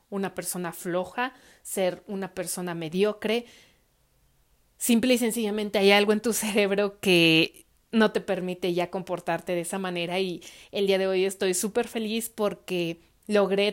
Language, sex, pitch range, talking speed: Spanish, female, 180-210 Hz, 150 wpm